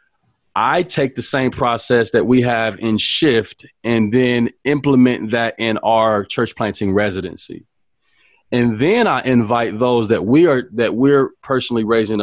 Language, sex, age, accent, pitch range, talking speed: English, male, 40-59, American, 105-120 Hz, 150 wpm